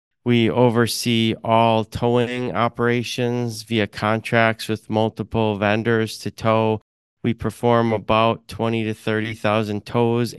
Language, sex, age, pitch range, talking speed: English, male, 30-49, 105-120 Hz, 110 wpm